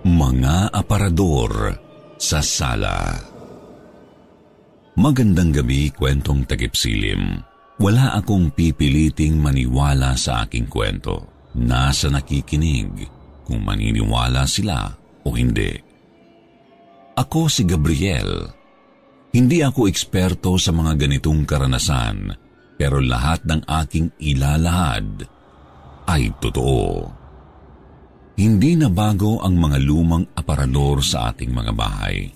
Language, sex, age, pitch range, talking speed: Filipino, male, 50-69, 70-100 Hz, 95 wpm